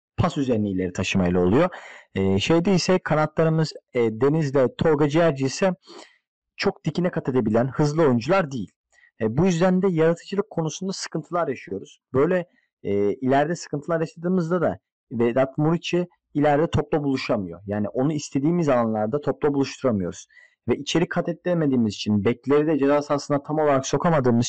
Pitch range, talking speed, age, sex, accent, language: 120-165 Hz, 145 wpm, 40-59, male, native, Turkish